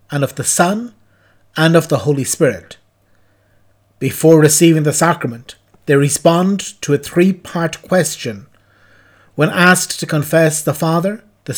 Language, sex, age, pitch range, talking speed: English, male, 60-79, 105-165 Hz, 140 wpm